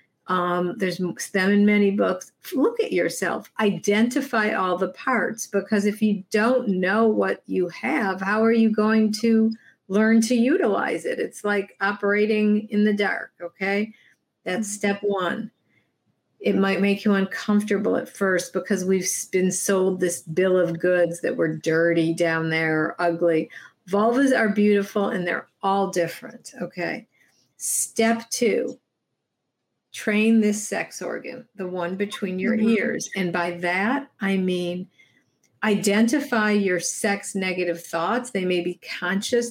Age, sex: 50-69, female